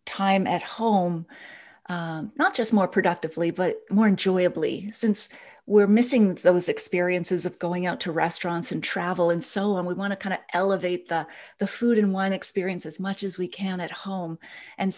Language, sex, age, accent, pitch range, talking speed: English, female, 40-59, American, 180-220 Hz, 185 wpm